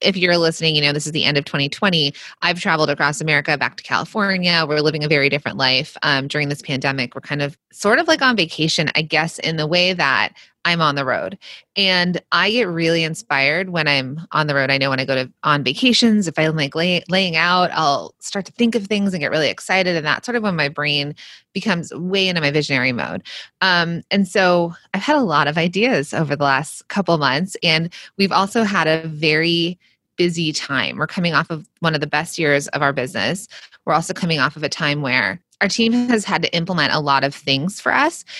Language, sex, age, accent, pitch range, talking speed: English, female, 20-39, American, 150-185 Hz, 230 wpm